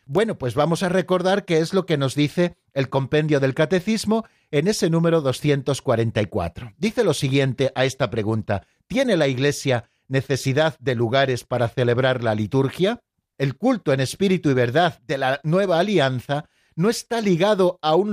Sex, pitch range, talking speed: male, 130-185 Hz, 165 wpm